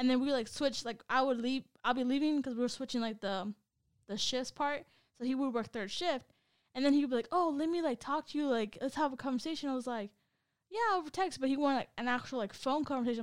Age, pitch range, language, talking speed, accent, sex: 10-29, 210-260 Hz, English, 270 wpm, American, female